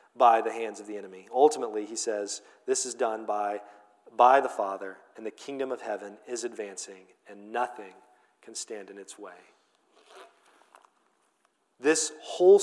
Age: 40-59